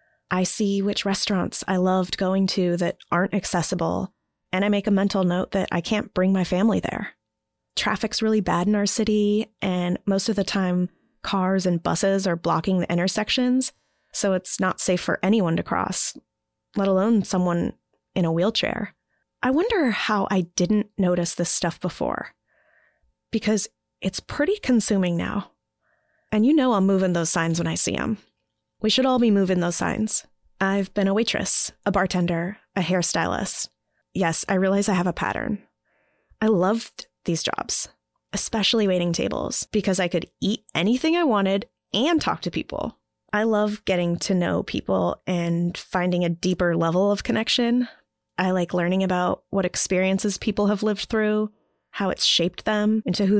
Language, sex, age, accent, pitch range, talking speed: English, female, 20-39, American, 180-215 Hz, 170 wpm